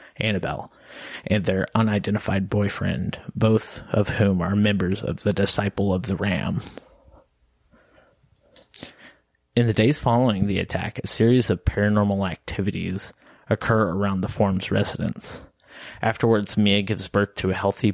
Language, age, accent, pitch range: English, 30-49, American, 95-105 Hz